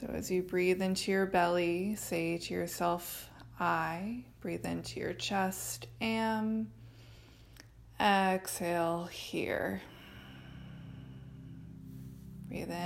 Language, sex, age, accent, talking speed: English, female, 20-39, American, 90 wpm